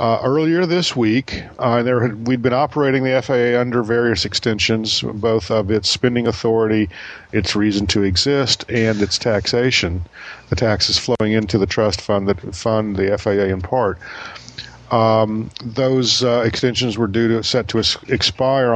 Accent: American